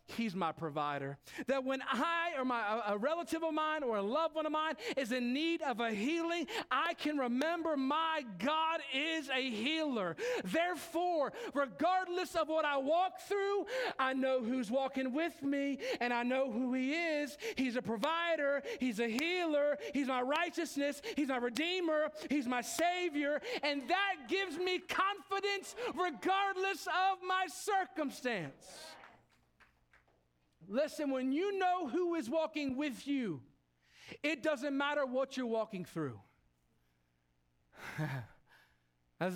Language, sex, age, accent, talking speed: English, male, 40-59, American, 140 wpm